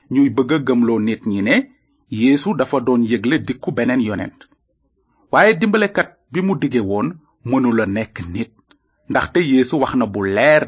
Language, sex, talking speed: French, male, 85 wpm